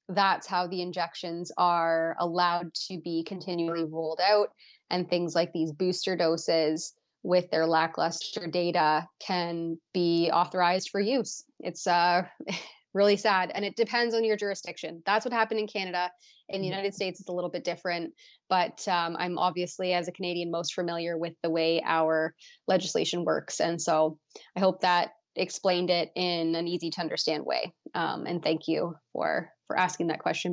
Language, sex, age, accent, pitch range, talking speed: English, female, 20-39, American, 170-205 Hz, 170 wpm